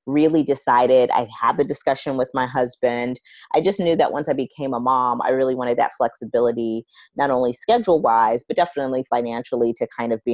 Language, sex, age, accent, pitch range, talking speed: English, female, 30-49, American, 120-150 Hz, 195 wpm